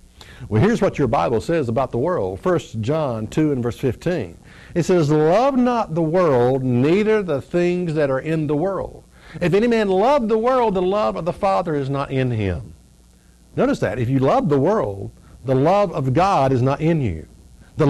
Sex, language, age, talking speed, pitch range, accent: male, English, 60-79, 200 wpm, 130-210 Hz, American